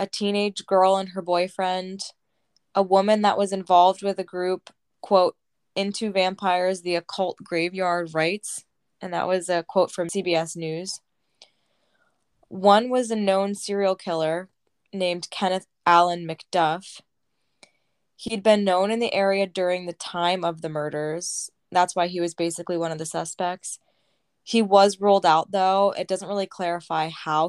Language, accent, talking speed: English, American, 155 wpm